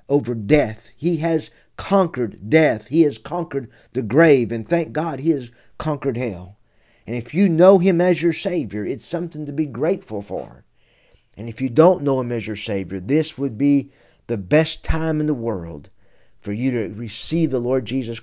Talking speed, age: 190 wpm, 50-69